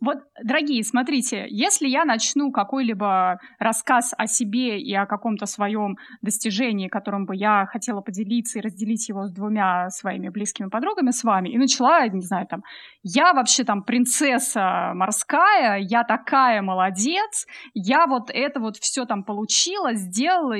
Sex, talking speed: female, 150 wpm